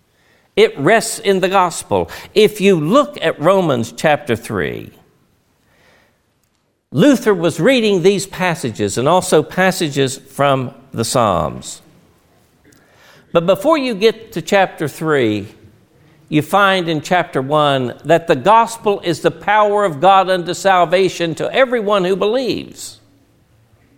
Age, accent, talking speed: 60-79, American, 125 wpm